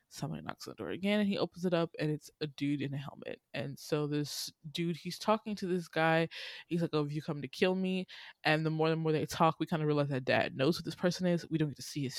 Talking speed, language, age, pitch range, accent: 295 wpm, English, 20-39, 145-175 Hz, American